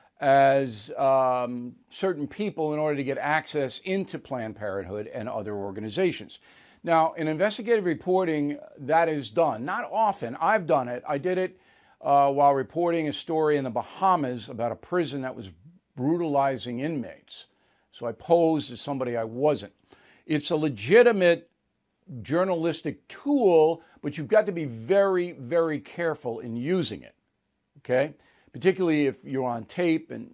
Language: English